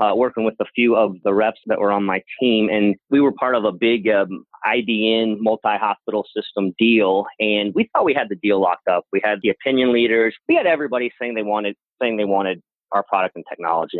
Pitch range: 105-125 Hz